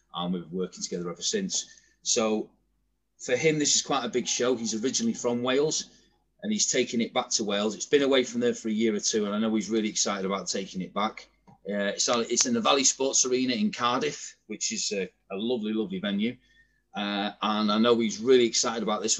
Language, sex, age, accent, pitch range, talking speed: English, male, 30-49, British, 110-130 Hz, 230 wpm